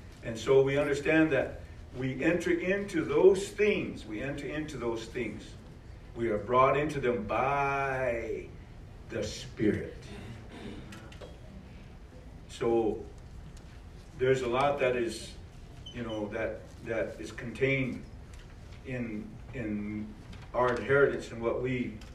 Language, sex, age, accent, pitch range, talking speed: English, male, 50-69, American, 110-140 Hz, 115 wpm